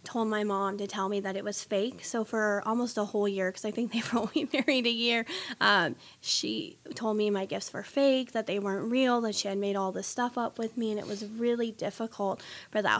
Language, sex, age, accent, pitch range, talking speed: English, female, 10-29, American, 205-240 Hz, 250 wpm